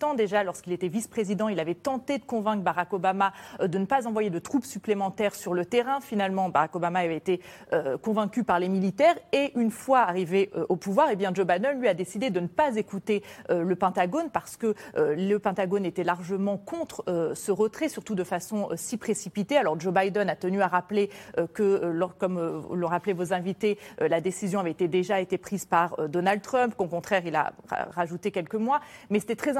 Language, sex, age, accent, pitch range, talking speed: French, female, 30-49, French, 185-220 Hz, 215 wpm